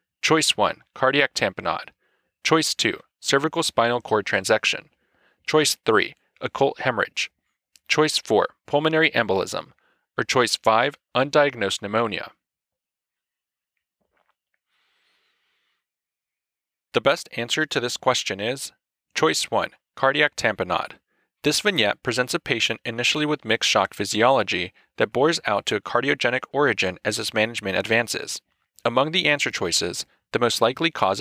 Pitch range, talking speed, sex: 115-145 Hz, 120 wpm, male